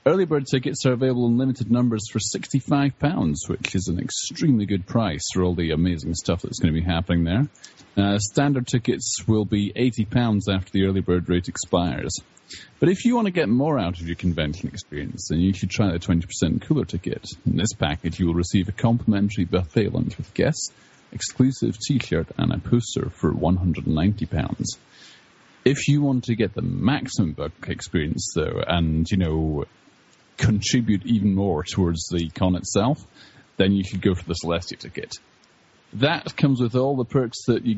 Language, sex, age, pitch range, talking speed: English, male, 30-49, 90-120 Hz, 180 wpm